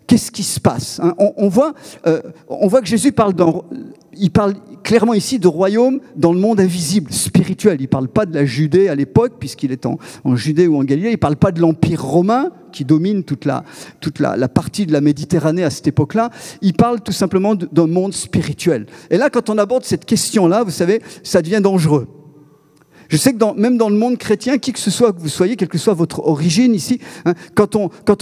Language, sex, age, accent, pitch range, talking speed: French, male, 50-69, French, 165-230 Hz, 215 wpm